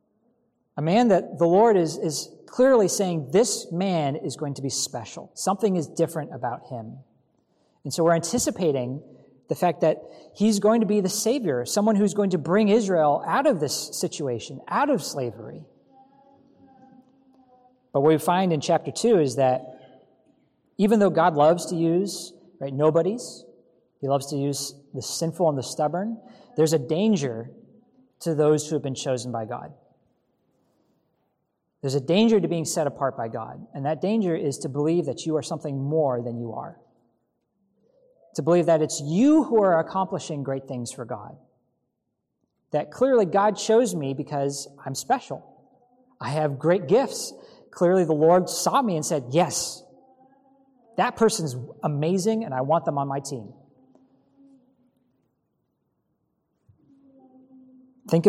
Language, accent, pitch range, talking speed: English, American, 140-215 Hz, 155 wpm